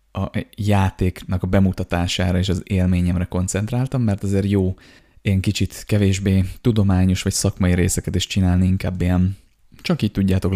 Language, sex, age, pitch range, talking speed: Hungarian, male, 20-39, 90-105 Hz, 140 wpm